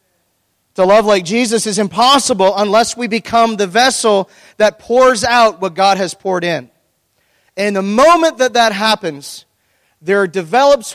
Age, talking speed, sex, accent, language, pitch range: 40-59, 150 wpm, male, American, English, 155-205 Hz